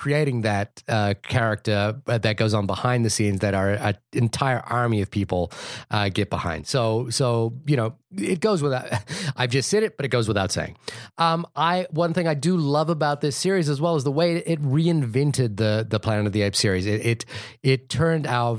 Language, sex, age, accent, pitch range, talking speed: English, male, 30-49, American, 115-155 Hz, 210 wpm